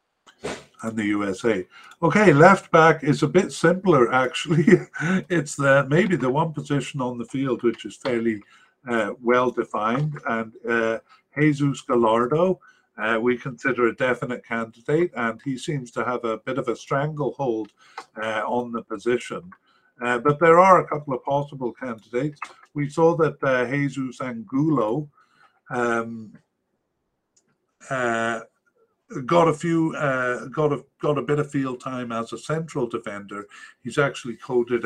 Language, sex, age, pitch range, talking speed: English, male, 50-69, 115-150 Hz, 150 wpm